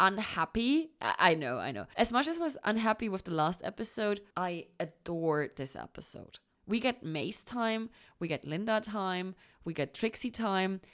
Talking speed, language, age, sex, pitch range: 170 wpm, English, 20-39, female, 165-225 Hz